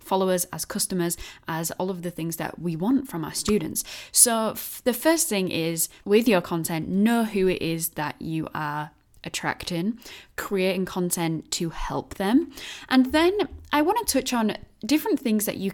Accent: British